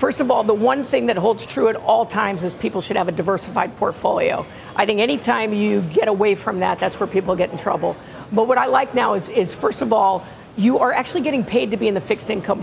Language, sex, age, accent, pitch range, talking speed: English, female, 50-69, American, 195-235 Hz, 260 wpm